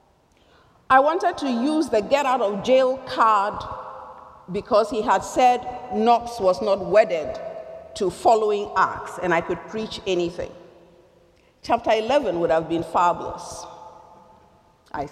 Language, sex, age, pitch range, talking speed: English, female, 50-69, 185-270 Hz, 130 wpm